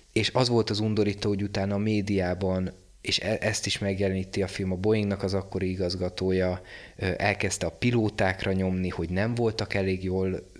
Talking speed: 165 wpm